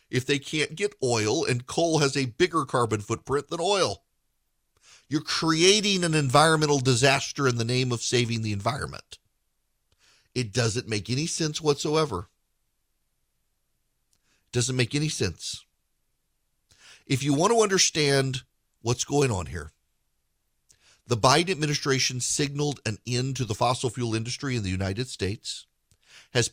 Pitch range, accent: 115-145 Hz, American